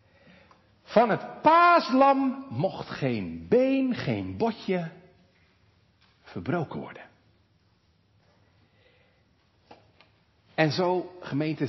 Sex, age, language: male, 50-69, Dutch